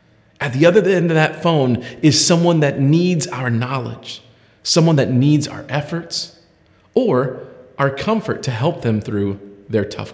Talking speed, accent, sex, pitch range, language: 160 wpm, American, male, 120-165 Hz, English